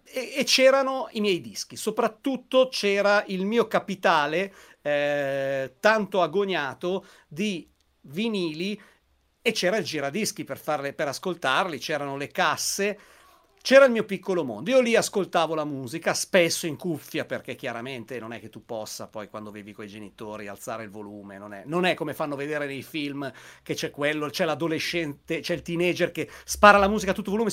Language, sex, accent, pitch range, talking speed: Italian, male, native, 155-220 Hz, 170 wpm